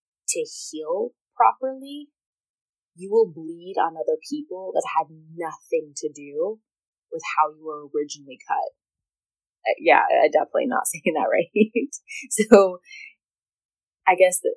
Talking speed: 130 wpm